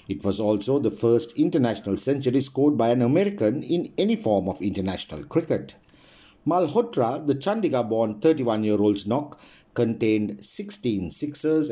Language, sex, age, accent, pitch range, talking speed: English, male, 50-69, Indian, 110-155 Hz, 125 wpm